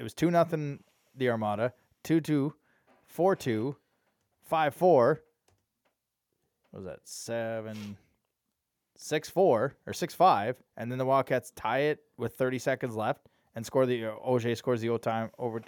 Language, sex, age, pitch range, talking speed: English, male, 20-39, 105-130 Hz, 105 wpm